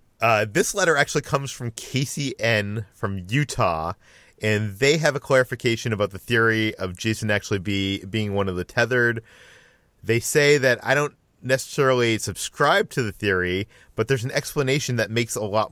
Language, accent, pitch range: English, American, 105-130 Hz